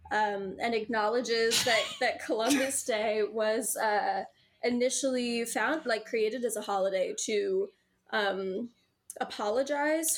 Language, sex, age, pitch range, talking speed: English, female, 10-29, 210-260 Hz, 110 wpm